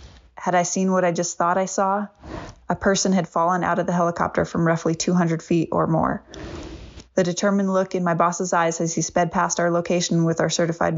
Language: English